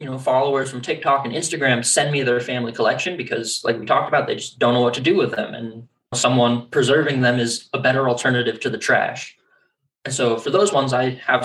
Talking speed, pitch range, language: 230 wpm, 120-140 Hz, English